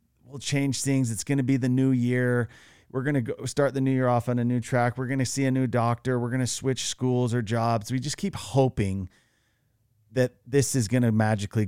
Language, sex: English, male